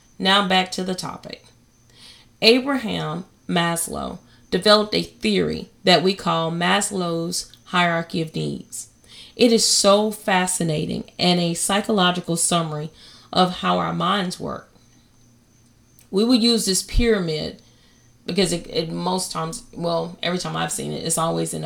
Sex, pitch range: female, 155-205 Hz